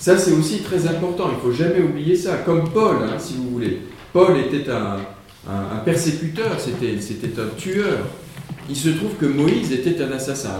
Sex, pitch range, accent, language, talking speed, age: male, 125-180 Hz, French, French, 200 wpm, 50-69